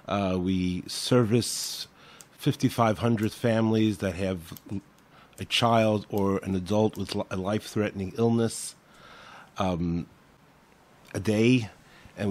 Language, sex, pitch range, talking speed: English, male, 105-125 Hz, 100 wpm